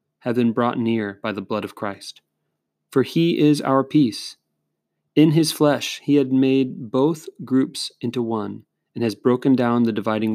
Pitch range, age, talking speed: 120-140 Hz, 30-49, 175 wpm